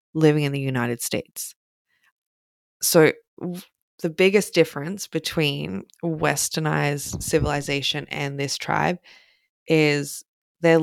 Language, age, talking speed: English, 20-39, 95 wpm